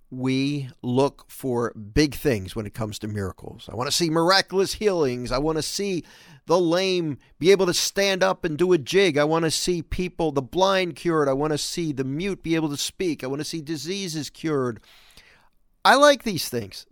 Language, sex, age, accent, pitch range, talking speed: English, male, 50-69, American, 120-180 Hz, 210 wpm